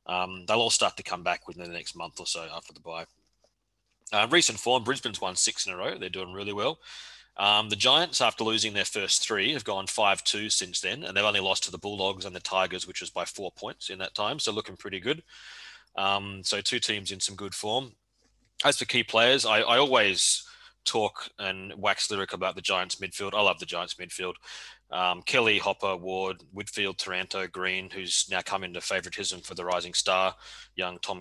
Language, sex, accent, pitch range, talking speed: English, male, Australian, 95-105 Hz, 210 wpm